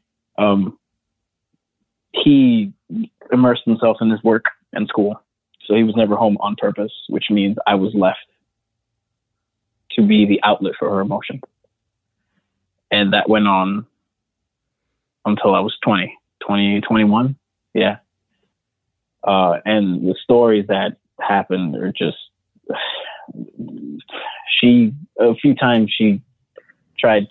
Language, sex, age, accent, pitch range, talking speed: English, male, 20-39, American, 100-115 Hz, 120 wpm